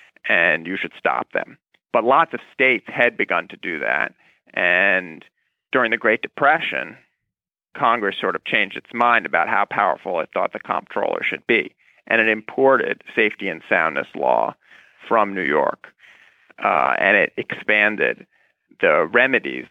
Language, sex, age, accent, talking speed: English, male, 40-59, American, 150 wpm